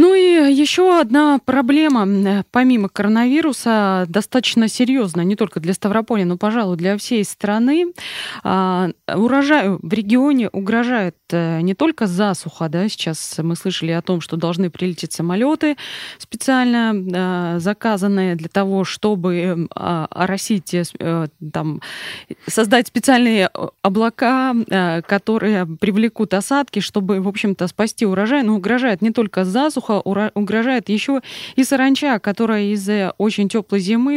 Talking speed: 110 wpm